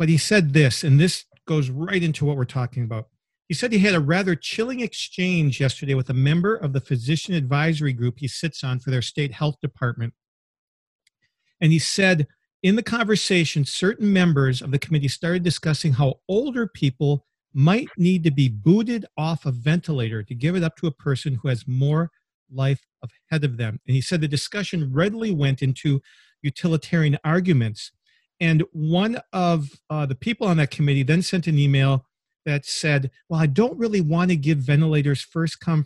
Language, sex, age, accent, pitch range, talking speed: English, male, 50-69, American, 140-175 Hz, 185 wpm